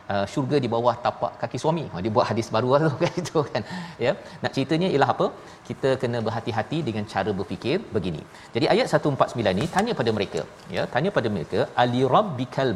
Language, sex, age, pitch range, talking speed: Malayalam, male, 40-59, 110-145 Hz, 200 wpm